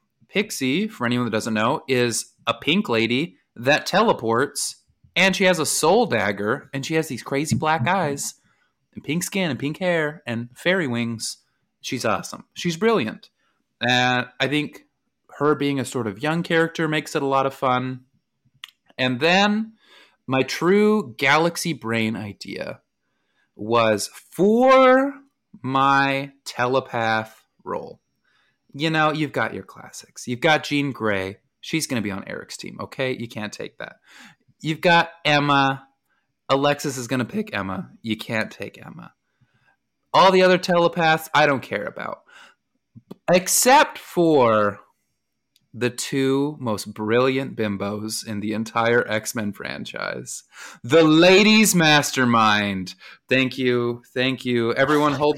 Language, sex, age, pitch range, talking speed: English, male, 30-49, 120-165 Hz, 140 wpm